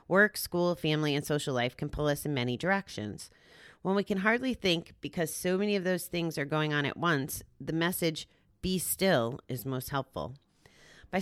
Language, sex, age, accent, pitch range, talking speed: English, female, 30-49, American, 135-185 Hz, 195 wpm